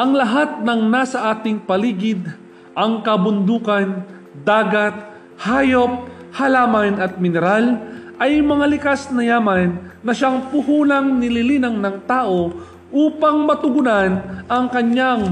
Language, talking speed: Filipino, 110 wpm